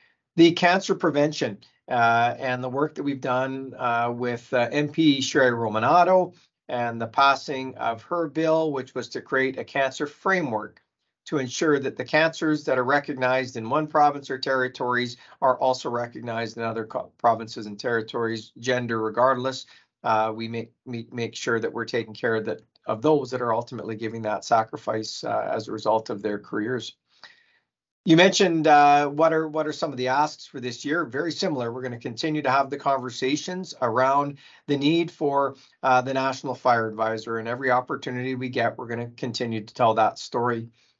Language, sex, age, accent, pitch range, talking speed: English, male, 40-59, American, 120-150 Hz, 180 wpm